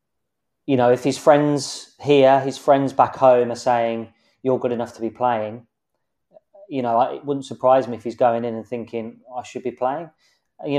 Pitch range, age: 115-135 Hz, 20-39